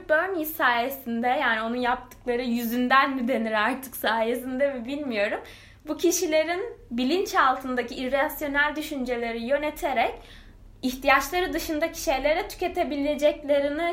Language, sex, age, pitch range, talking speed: Turkish, female, 10-29, 245-310 Hz, 95 wpm